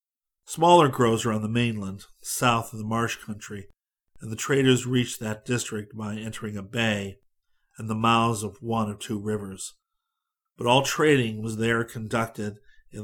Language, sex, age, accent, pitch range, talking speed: English, male, 50-69, American, 105-125 Hz, 160 wpm